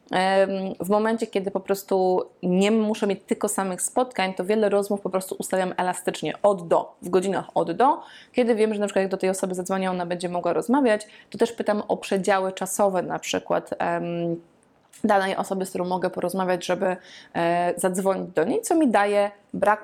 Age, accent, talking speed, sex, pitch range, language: 20-39, native, 185 wpm, female, 180-210 Hz, Polish